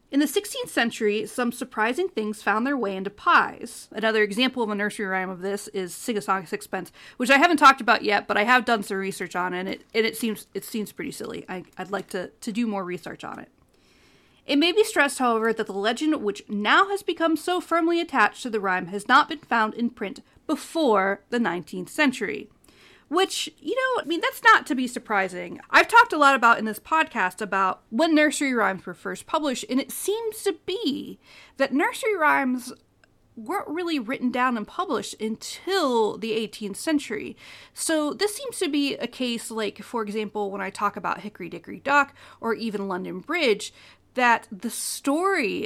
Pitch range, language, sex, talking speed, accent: 205-305 Hz, English, female, 200 wpm, American